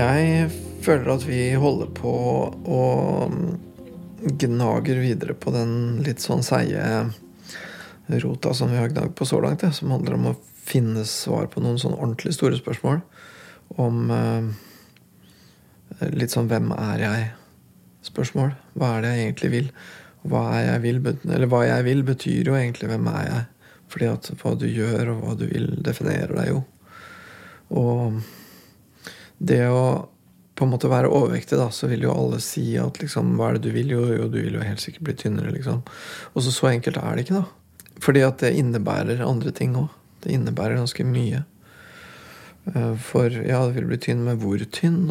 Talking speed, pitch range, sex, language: 170 wpm, 110-135 Hz, male, Danish